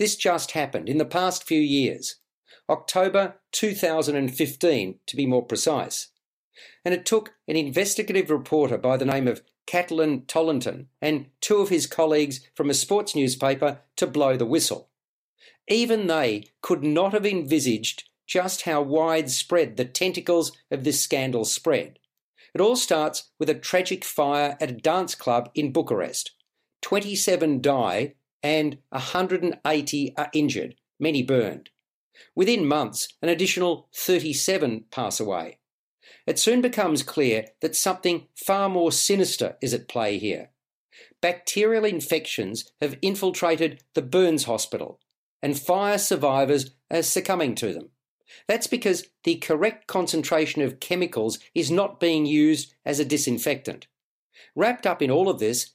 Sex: male